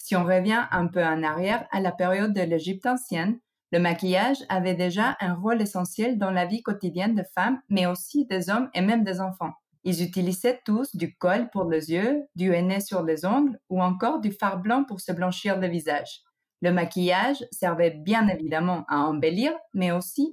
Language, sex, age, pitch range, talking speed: French, female, 30-49, 175-235 Hz, 195 wpm